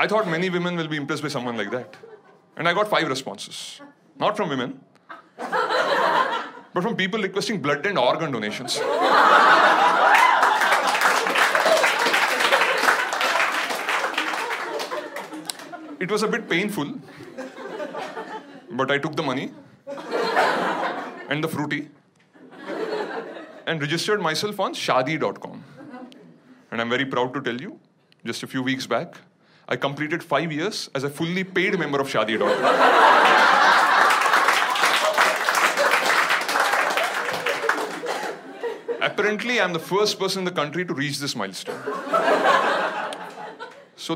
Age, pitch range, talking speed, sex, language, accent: 30-49, 140-210 Hz, 110 wpm, male, English, Indian